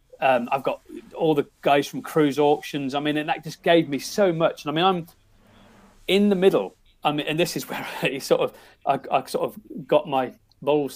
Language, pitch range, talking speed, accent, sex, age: English, 140-205 Hz, 225 wpm, British, male, 40-59